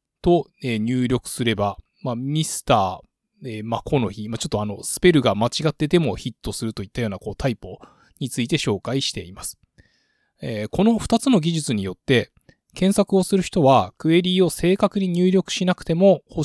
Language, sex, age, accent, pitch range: Japanese, male, 20-39, native, 120-175 Hz